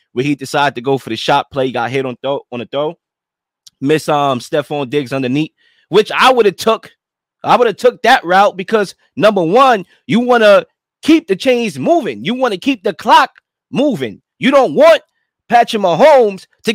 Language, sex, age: English, male, 20-39